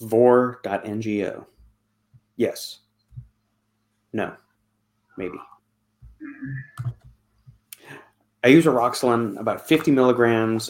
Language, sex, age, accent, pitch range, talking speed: English, male, 30-49, American, 105-125 Hz, 55 wpm